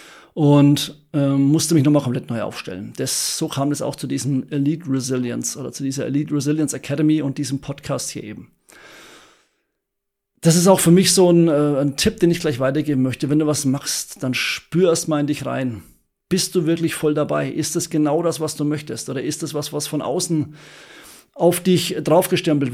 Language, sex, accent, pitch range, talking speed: German, male, German, 140-170 Hz, 200 wpm